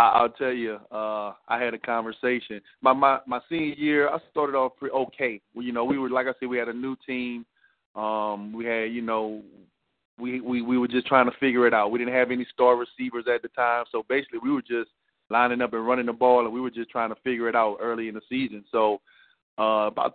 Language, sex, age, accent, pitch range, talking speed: English, male, 30-49, American, 115-135 Hz, 245 wpm